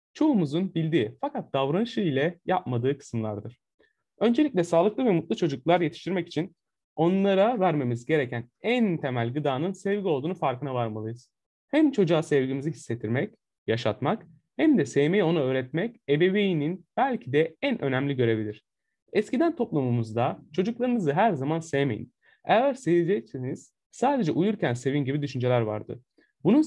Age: 30-49